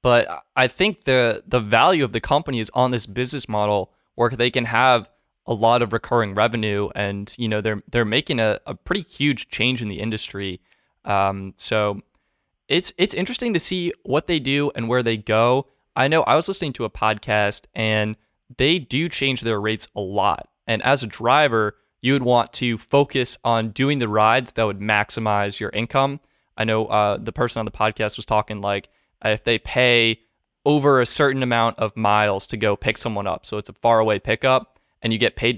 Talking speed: 200 wpm